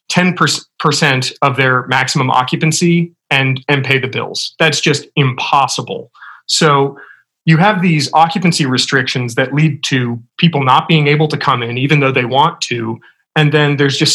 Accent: American